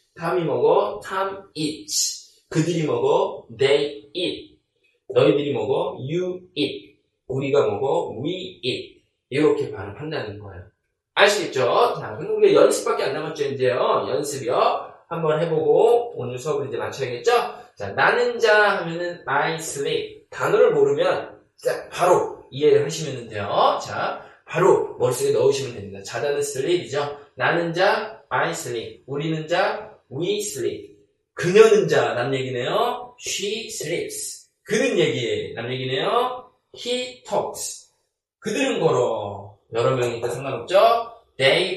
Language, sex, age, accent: Korean, male, 20-39, native